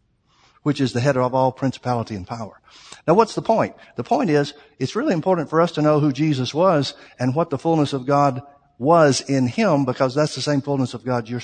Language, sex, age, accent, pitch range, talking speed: English, male, 60-79, American, 135-170 Hz, 225 wpm